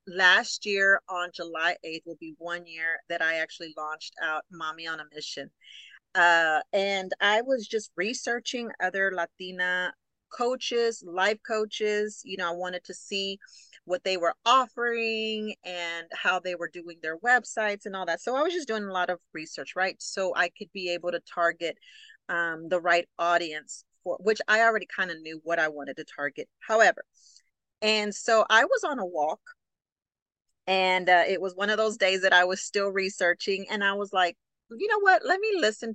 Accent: American